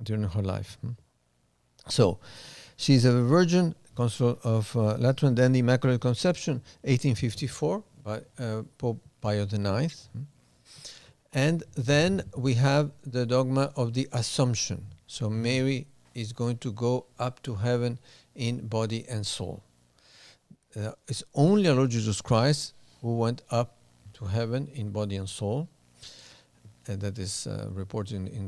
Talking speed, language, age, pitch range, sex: 140 wpm, English, 50-69, 105-135 Hz, male